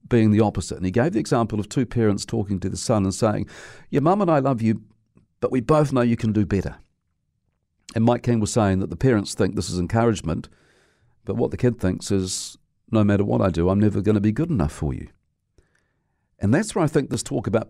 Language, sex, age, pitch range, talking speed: English, male, 50-69, 95-125 Hz, 240 wpm